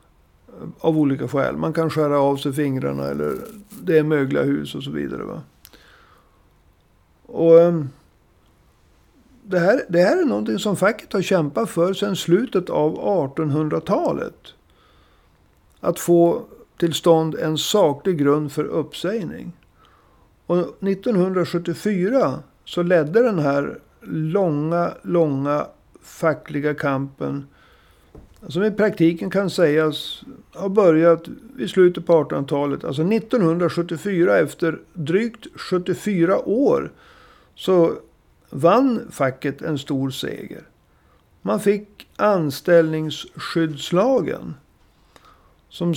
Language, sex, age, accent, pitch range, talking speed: Swedish, male, 60-79, native, 140-180 Hz, 105 wpm